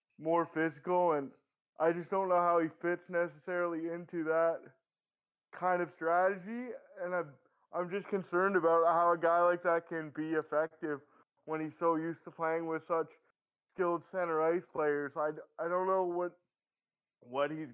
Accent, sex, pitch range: American, male, 165-190 Hz